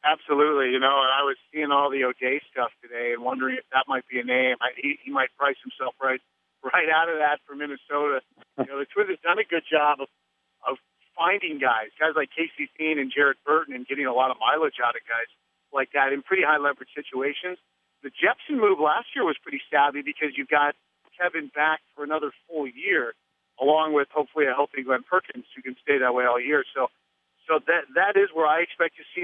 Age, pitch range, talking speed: 50-69, 130-160 Hz, 215 wpm